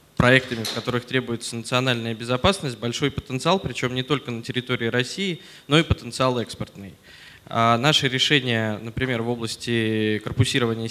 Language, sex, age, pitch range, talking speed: Russian, male, 20-39, 115-135 Hz, 130 wpm